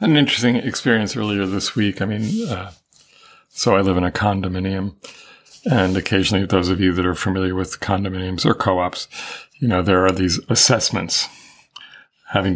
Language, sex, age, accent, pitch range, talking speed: English, male, 40-59, American, 90-105 Hz, 160 wpm